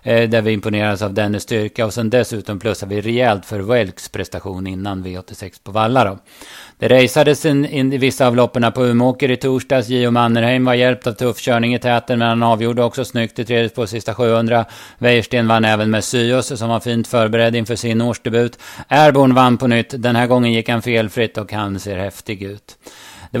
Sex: male